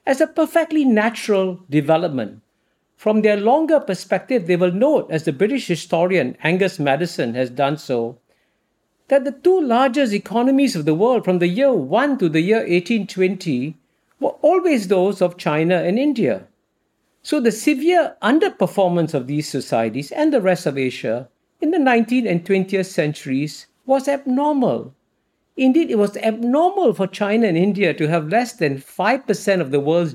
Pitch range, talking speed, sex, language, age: 155-235 Hz, 160 wpm, male, English, 50-69